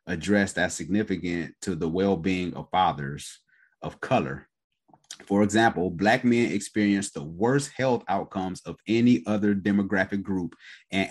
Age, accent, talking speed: 30-49, American, 135 wpm